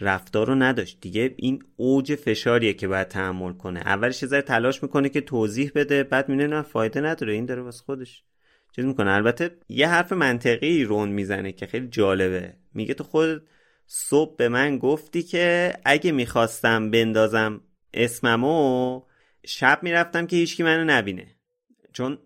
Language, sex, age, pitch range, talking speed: Persian, male, 30-49, 115-155 Hz, 155 wpm